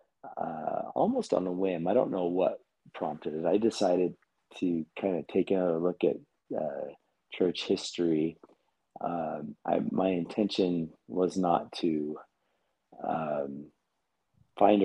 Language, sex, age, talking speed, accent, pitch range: English, male, 30-49, 125 wpm, American, 80-95 Hz